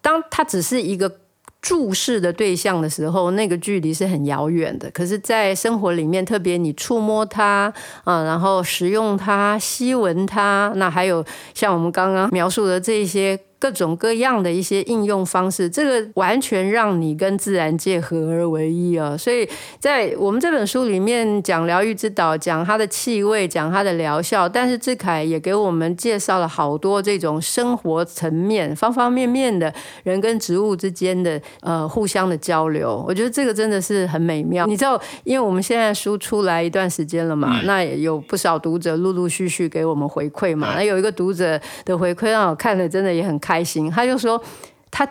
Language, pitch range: Chinese, 170-220 Hz